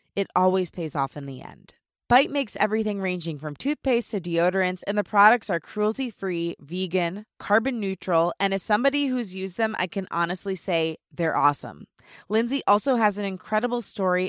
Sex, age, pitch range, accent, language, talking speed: female, 20-39, 170-235 Hz, American, English, 175 wpm